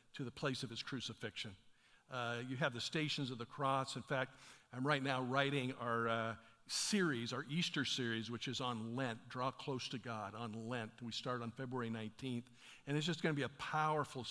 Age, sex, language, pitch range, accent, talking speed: 50-69, male, English, 120-150 Hz, American, 205 wpm